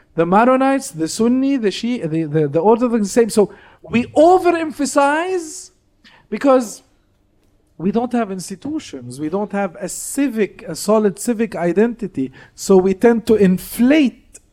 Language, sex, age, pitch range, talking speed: English, male, 50-69, 165-240 Hz, 140 wpm